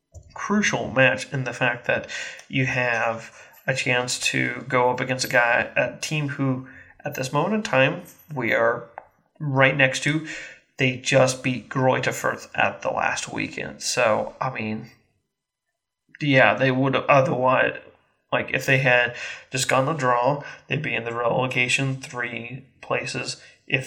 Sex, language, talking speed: male, English, 150 wpm